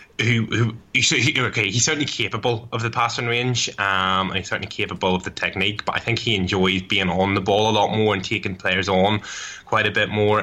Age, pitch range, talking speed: 10-29, 95-115 Hz, 220 wpm